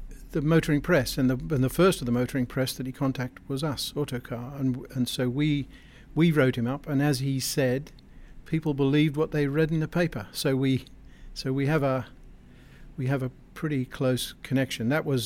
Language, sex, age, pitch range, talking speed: English, male, 50-69, 125-140 Hz, 205 wpm